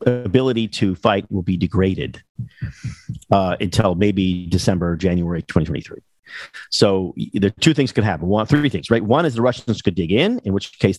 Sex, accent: male, American